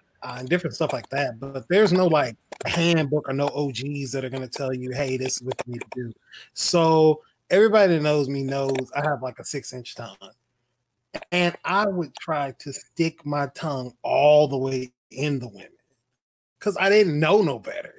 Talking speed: 205 wpm